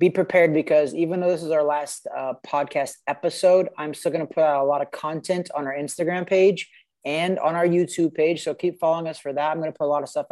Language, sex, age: English, male, 20-39